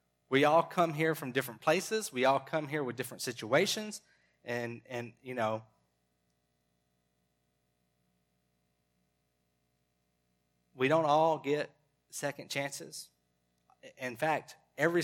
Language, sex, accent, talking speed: English, male, American, 110 wpm